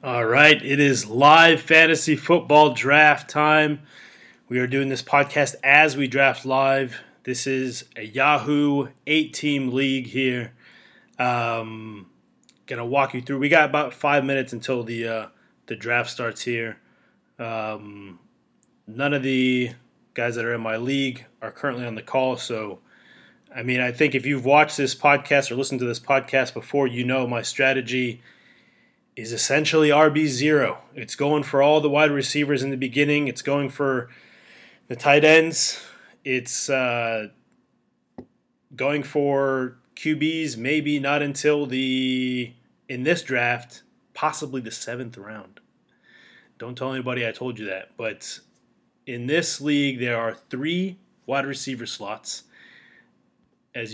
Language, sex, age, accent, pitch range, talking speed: English, male, 20-39, American, 120-145 Hz, 145 wpm